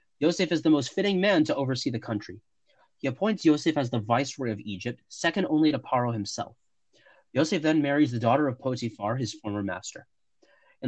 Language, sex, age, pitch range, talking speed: English, male, 30-49, 115-160 Hz, 190 wpm